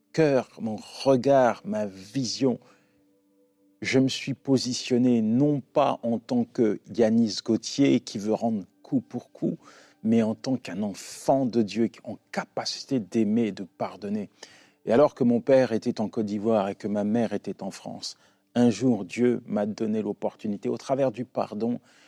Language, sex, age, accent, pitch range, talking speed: French, male, 40-59, French, 110-140 Hz, 165 wpm